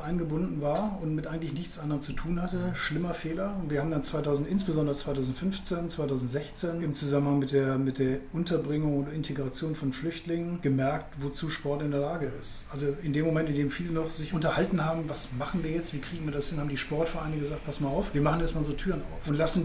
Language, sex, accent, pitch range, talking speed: German, male, German, 145-165 Hz, 220 wpm